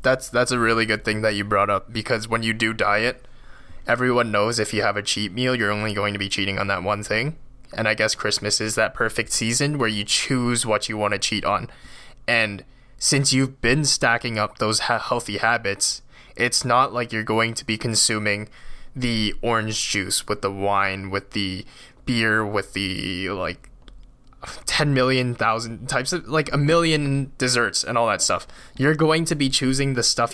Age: 20-39